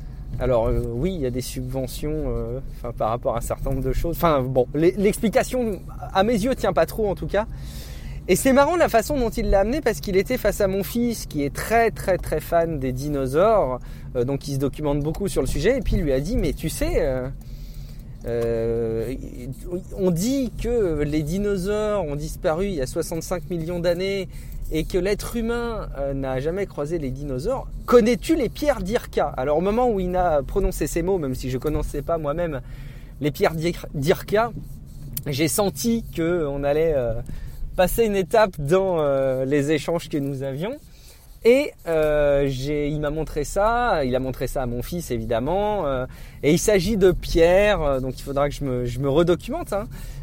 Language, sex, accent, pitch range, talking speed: French, male, French, 135-190 Hz, 195 wpm